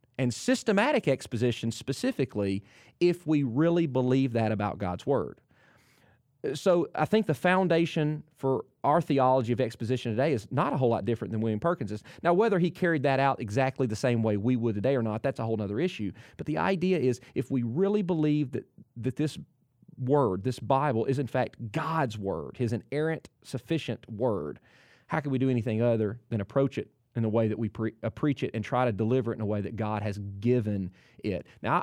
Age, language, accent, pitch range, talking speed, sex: 30-49, English, American, 115-155 Hz, 200 wpm, male